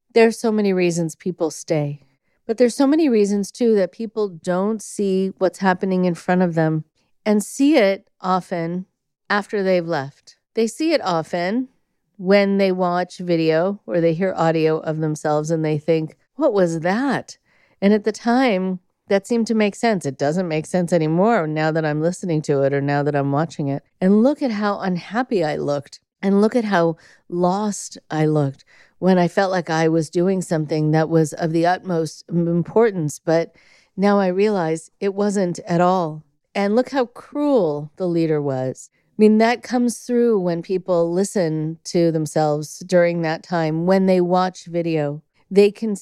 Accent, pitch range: American, 160-200 Hz